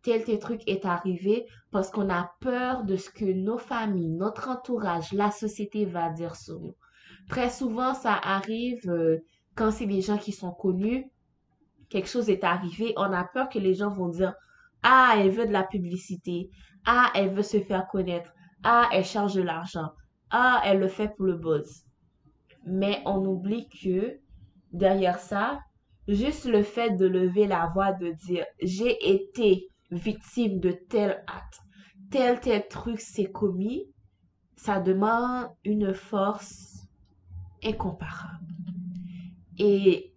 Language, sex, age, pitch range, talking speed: French, female, 20-39, 180-220 Hz, 160 wpm